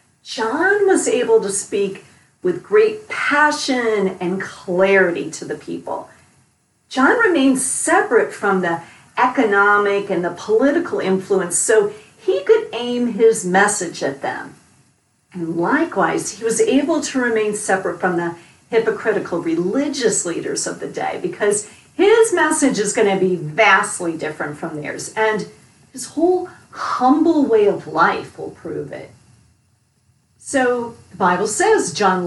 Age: 40-59